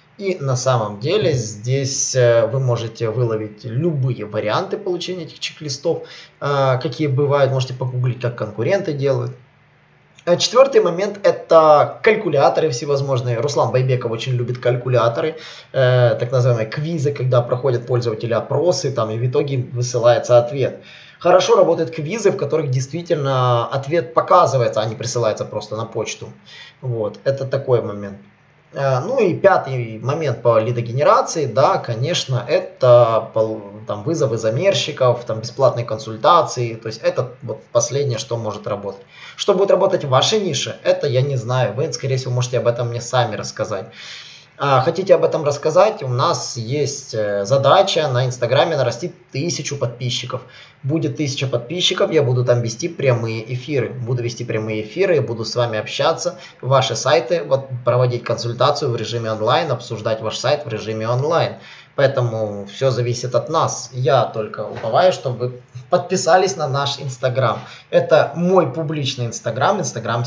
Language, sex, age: Russian, male, 20-39